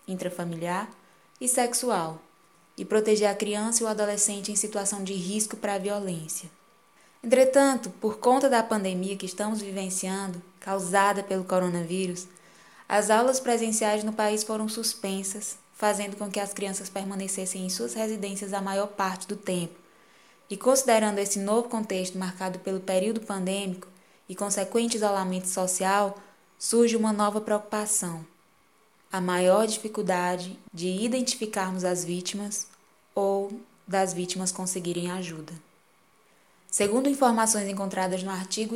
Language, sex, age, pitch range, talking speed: Portuguese, female, 10-29, 185-215 Hz, 130 wpm